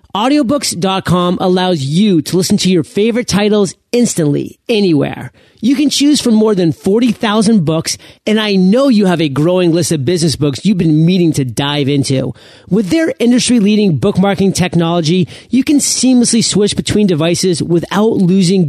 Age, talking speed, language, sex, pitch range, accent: 30-49, 155 wpm, English, male, 155-220 Hz, American